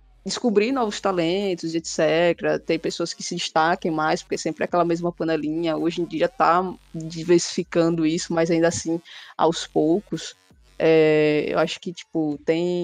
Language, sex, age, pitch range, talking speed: Portuguese, female, 20-39, 160-185 Hz, 155 wpm